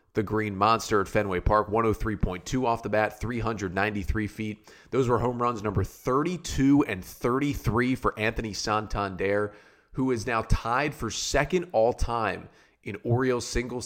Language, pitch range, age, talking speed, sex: English, 105-135 Hz, 30-49, 145 wpm, male